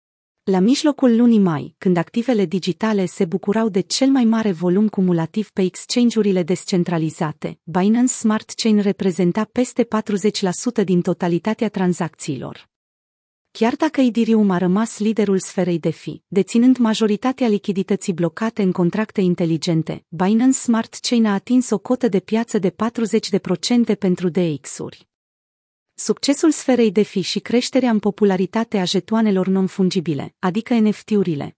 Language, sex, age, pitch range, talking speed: Romanian, female, 30-49, 185-225 Hz, 130 wpm